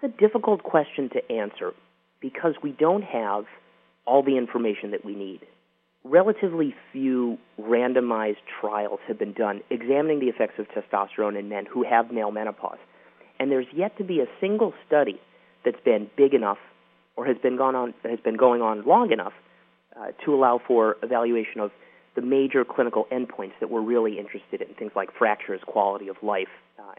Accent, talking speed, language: American, 165 wpm, English